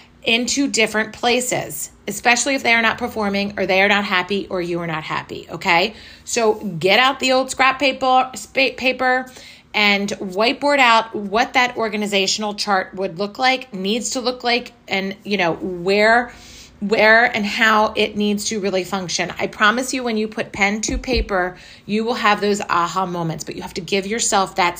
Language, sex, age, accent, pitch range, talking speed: English, female, 30-49, American, 190-230 Hz, 185 wpm